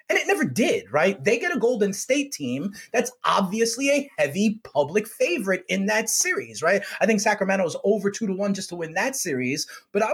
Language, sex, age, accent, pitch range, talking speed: English, male, 30-49, American, 170-240 Hz, 205 wpm